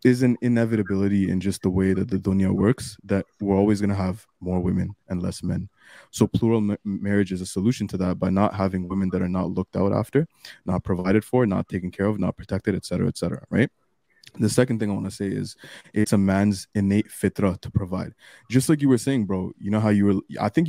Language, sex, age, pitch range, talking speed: English, male, 20-39, 95-110 Hz, 230 wpm